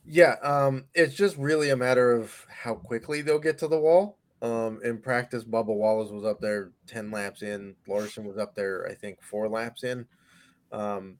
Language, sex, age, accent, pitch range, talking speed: English, male, 20-39, American, 105-135 Hz, 195 wpm